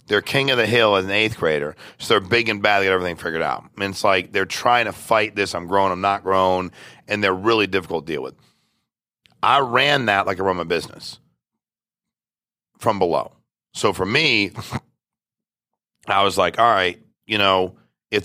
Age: 40-59